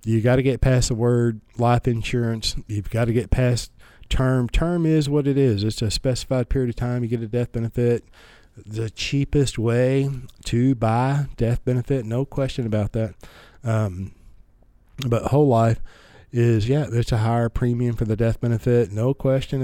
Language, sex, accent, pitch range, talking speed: English, male, American, 105-125 Hz, 175 wpm